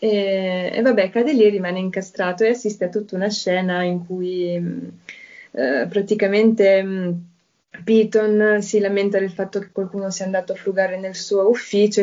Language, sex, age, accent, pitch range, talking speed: Italian, female, 20-39, native, 185-210 Hz, 155 wpm